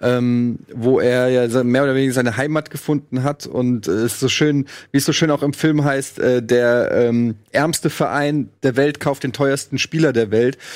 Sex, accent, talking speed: male, German, 205 wpm